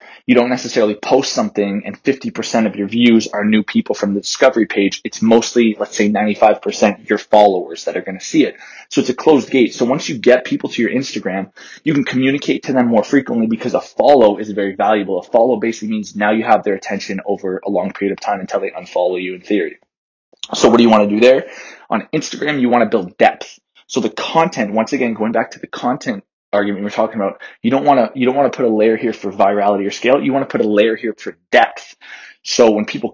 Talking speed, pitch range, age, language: 245 wpm, 105-125 Hz, 20-39, English